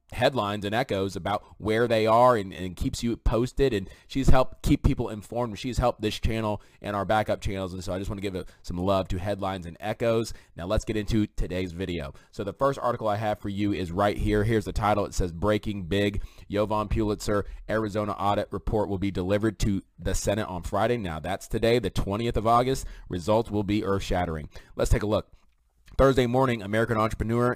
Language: English